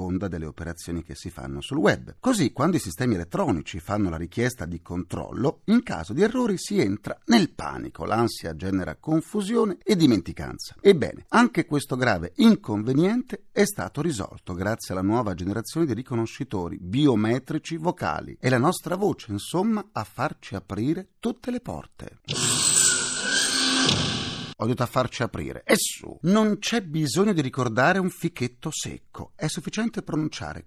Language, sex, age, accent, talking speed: Italian, male, 40-59, native, 145 wpm